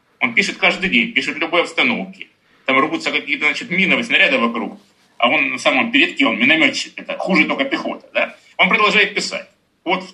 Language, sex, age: Russian, male, 30-49